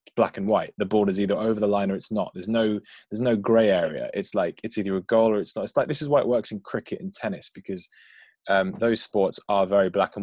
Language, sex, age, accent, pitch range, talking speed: English, male, 20-39, British, 100-145 Hz, 275 wpm